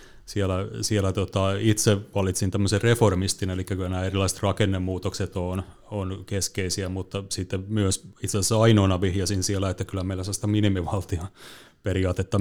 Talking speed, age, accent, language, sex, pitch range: 135 wpm, 30-49, native, Finnish, male, 95-110 Hz